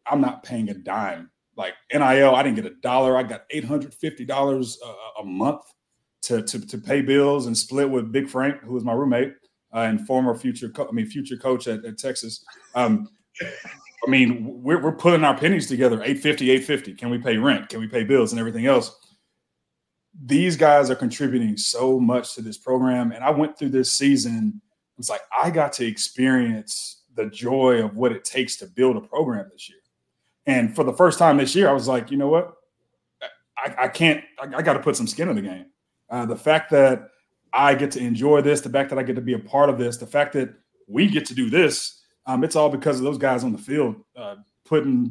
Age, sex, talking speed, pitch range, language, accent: 30-49, male, 220 wpm, 125-160 Hz, English, American